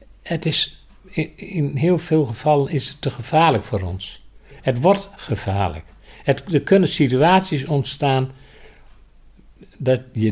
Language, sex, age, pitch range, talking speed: Dutch, male, 50-69, 110-155 Hz, 130 wpm